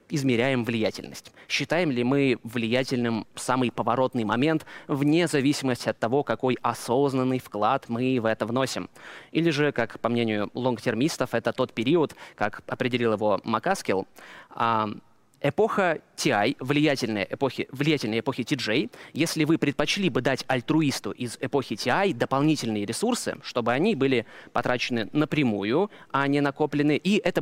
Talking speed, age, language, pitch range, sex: 130 wpm, 20-39, Russian, 120-155 Hz, male